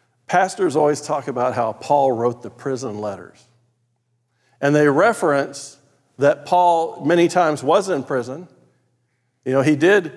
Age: 50-69